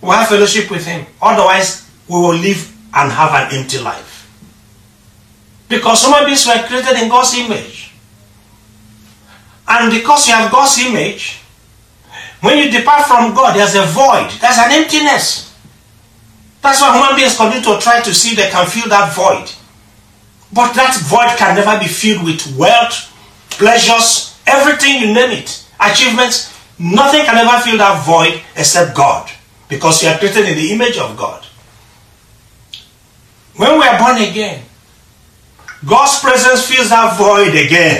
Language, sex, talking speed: English, male, 155 wpm